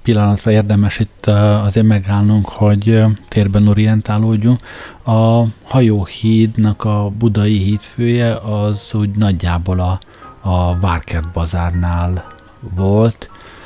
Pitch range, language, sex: 95-105 Hz, Hungarian, male